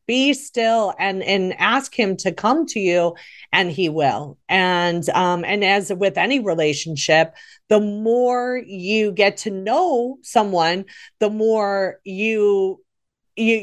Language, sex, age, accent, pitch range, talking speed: English, female, 40-59, American, 175-220 Hz, 135 wpm